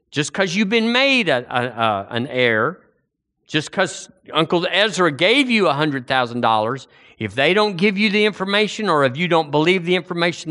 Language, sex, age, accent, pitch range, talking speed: English, male, 50-69, American, 110-180 Hz, 175 wpm